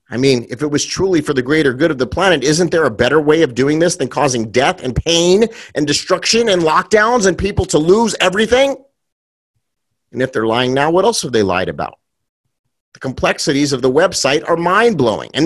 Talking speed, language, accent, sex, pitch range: 210 wpm, English, American, male, 130-200 Hz